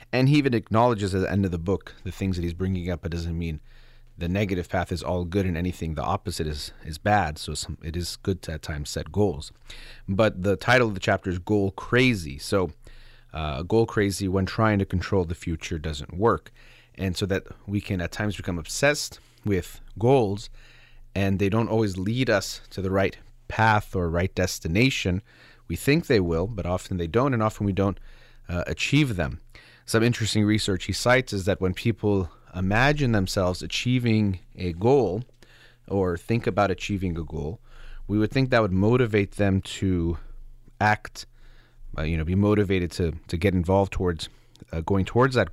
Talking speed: 190 wpm